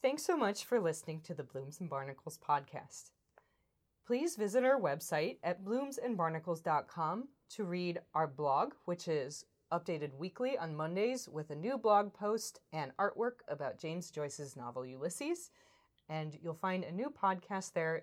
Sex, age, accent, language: female, 20-39, American, English